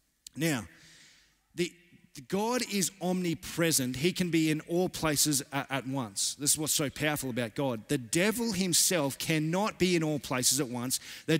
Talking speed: 175 wpm